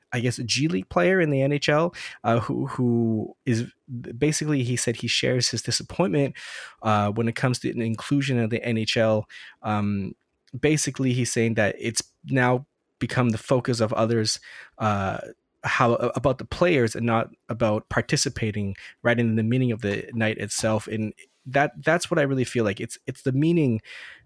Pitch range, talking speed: 115-145 Hz, 175 wpm